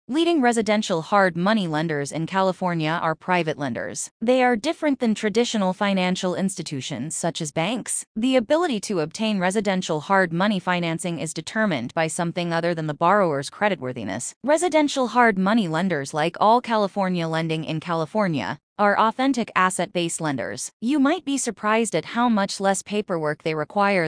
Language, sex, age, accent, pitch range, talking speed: English, female, 20-39, American, 165-220 Hz, 155 wpm